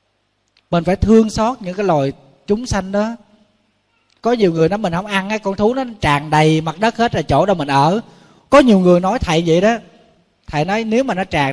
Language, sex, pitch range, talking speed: Vietnamese, male, 135-195 Hz, 230 wpm